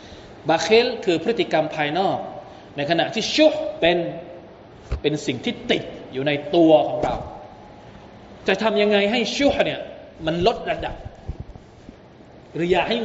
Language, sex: Thai, male